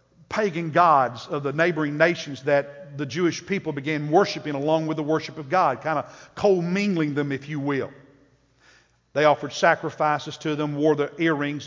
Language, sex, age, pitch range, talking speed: English, male, 50-69, 150-215 Hz, 170 wpm